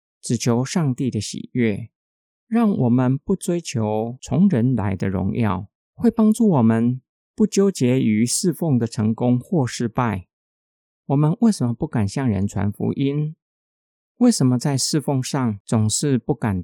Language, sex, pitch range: Chinese, male, 110-155 Hz